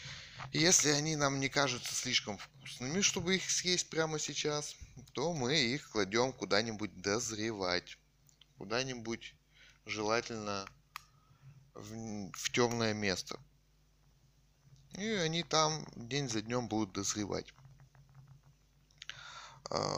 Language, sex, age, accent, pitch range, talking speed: Russian, male, 20-39, native, 115-145 Hz, 95 wpm